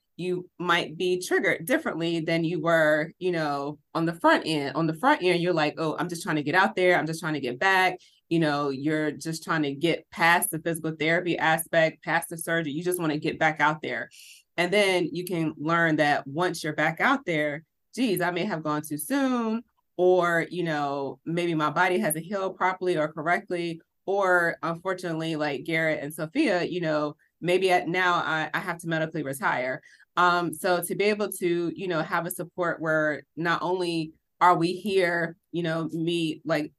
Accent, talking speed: American, 200 wpm